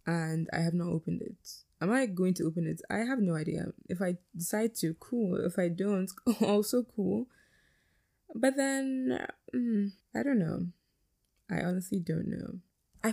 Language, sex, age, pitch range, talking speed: English, female, 20-39, 165-210 Hz, 170 wpm